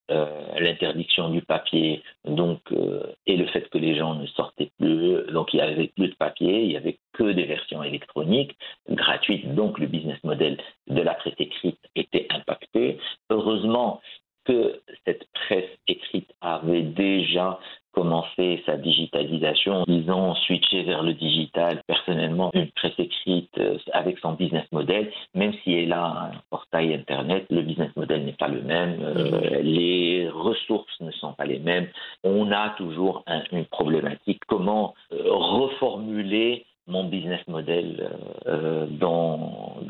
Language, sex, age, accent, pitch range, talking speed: French, male, 50-69, French, 85-105 Hz, 145 wpm